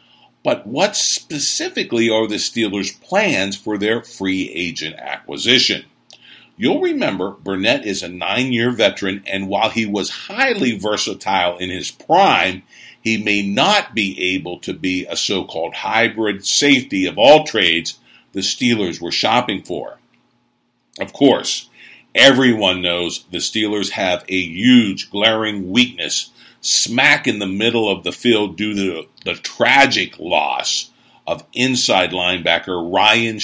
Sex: male